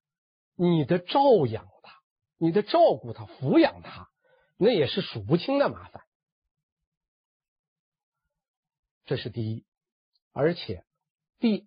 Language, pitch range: Chinese, 135-200 Hz